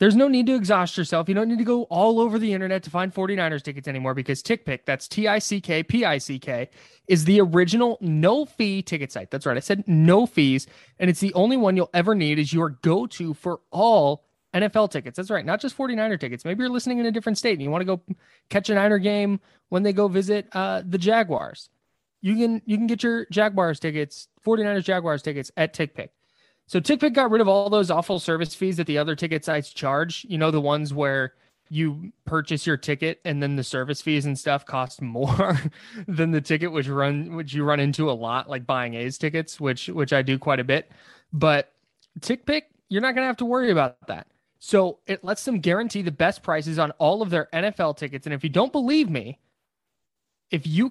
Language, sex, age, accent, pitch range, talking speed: English, male, 20-39, American, 150-210 Hz, 215 wpm